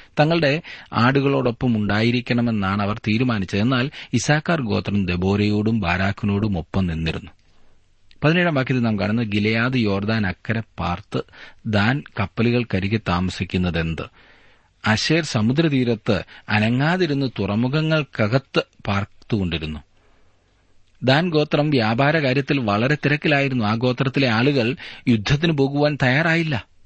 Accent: native